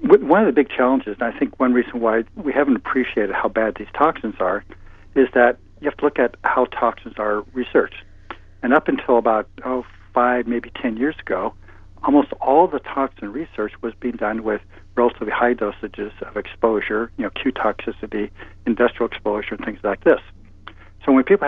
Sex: male